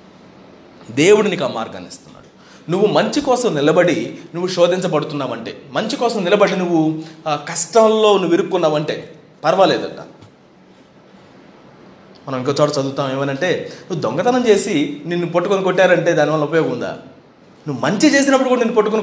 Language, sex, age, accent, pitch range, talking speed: Telugu, male, 30-49, native, 175-240 Hz, 130 wpm